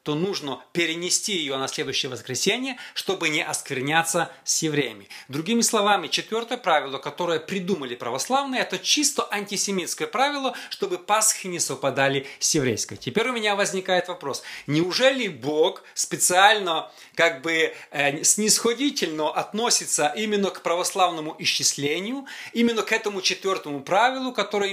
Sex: male